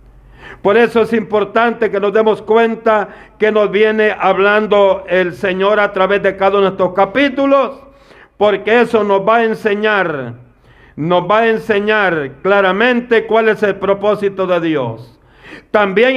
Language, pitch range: Spanish, 165-215 Hz